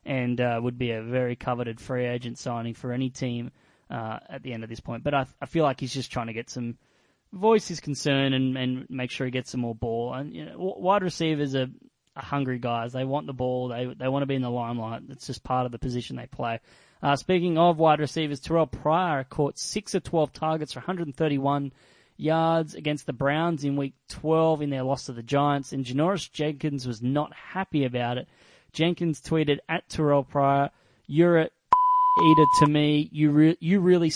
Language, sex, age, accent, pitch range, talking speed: English, male, 20-39, Australian, 130-160 Hz, 215 wpm